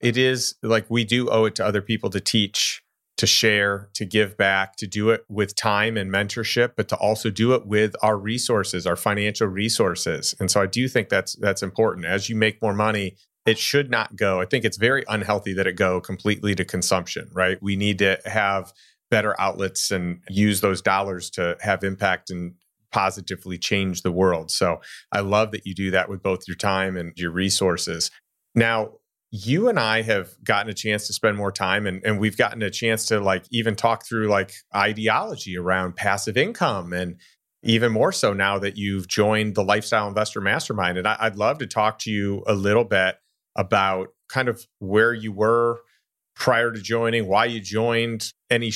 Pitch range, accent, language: 95-115 Hz, American, English